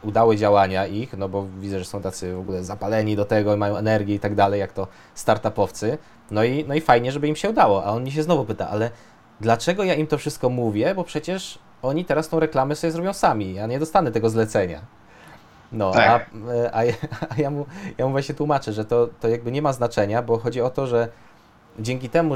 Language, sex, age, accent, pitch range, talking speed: Polish, male, 20-39, native, 110-135 Hz, 215 wpm